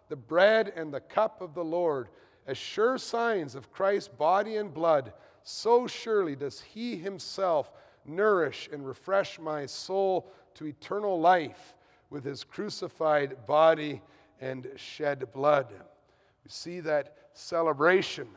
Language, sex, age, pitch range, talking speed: English, male, 40-59, 150-200 Hz, 130 wpm